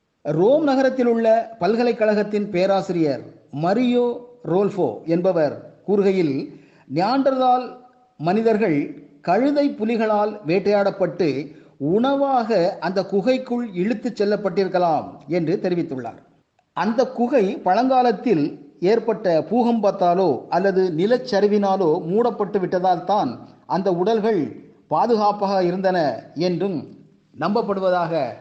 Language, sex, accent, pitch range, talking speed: Tamil, male, native, 175-220 Hz, 75 wpm